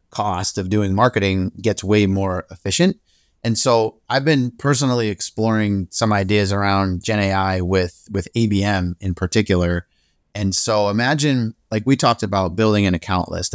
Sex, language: male, English